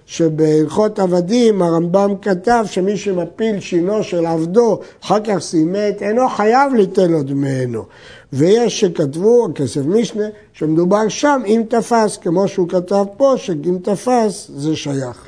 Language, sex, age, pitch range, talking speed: Hebrew, male, 60-79, 160-210 Hz, 130 wpm